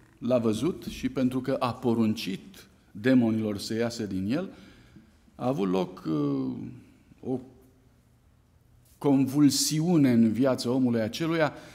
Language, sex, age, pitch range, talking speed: Romanian, male, 50-69, 110-135 Hz, 105 wpm